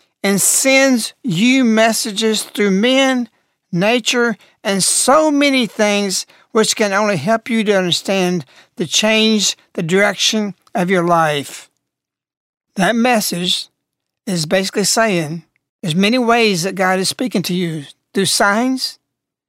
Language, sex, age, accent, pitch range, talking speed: English, male, 60-79, American, 180-230 Hz, 125 wpm